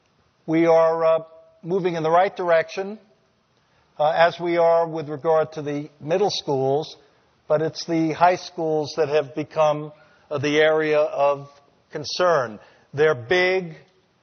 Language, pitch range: English, 150-170 Hz